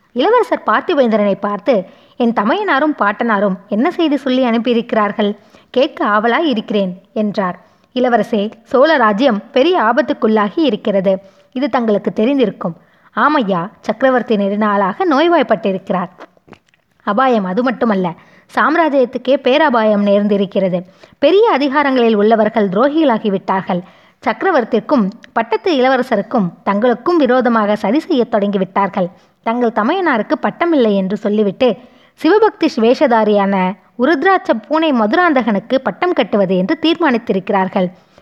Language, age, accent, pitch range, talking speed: Tamil, 20-39, native, 205-280 Hz, 95 wpm